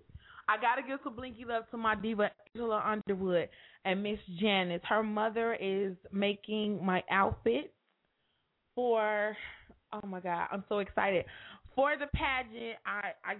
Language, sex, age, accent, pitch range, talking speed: English, female, 20-39, American, 190-230 Hz, 145 wpm